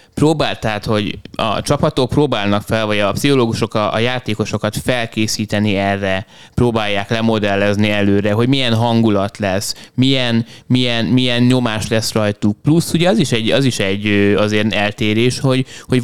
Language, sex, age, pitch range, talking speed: Hungarian, male, 20-39, 105-125 Hz, 150 wpm